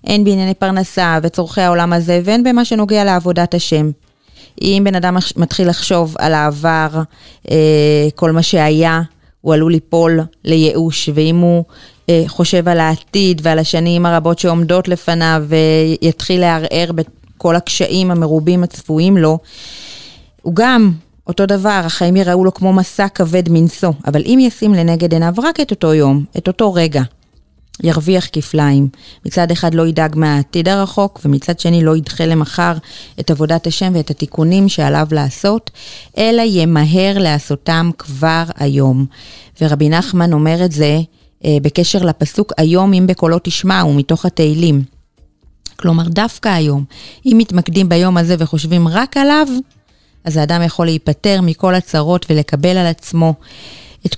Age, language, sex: 30-49, Hebrew, female